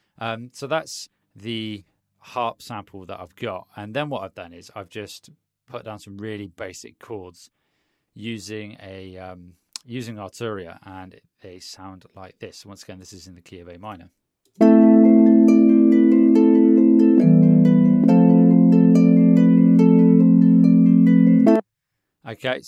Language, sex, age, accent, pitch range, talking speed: English, male, 30-49, British, 95-120 Hz, 115 wpm